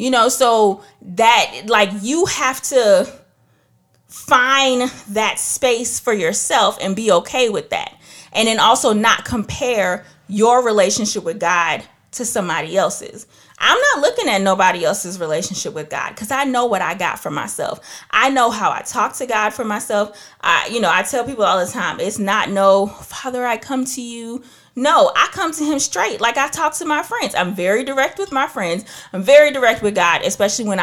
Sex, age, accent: female, 30-49, American